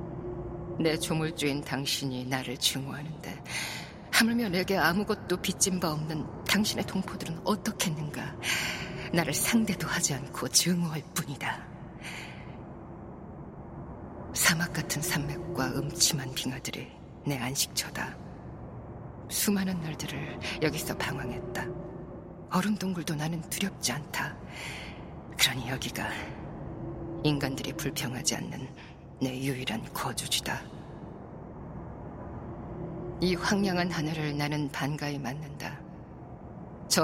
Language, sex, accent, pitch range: Korean, female, native, 140-180 Hz